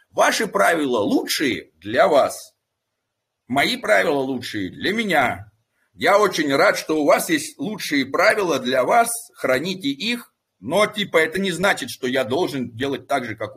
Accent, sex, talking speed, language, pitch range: native, male, 155 wpm, Russian, 130-200 Hz